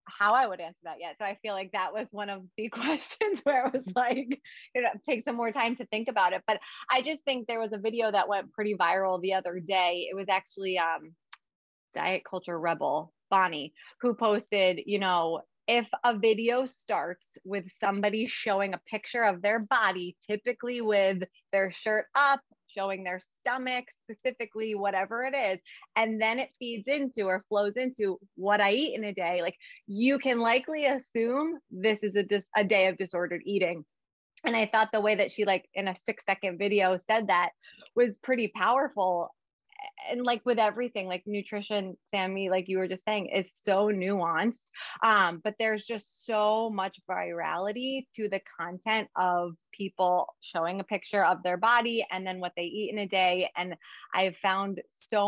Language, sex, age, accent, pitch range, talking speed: English, female, 20-39, American, 185-230 Hz, 185 wpm